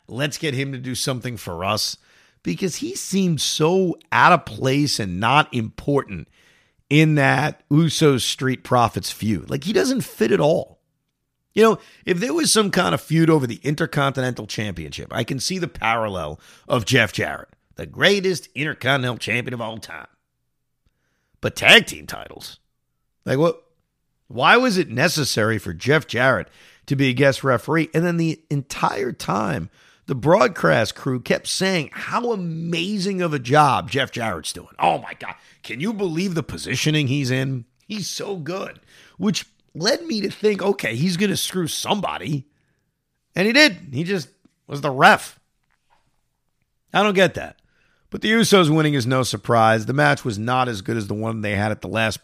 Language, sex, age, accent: English, male, 50-69, American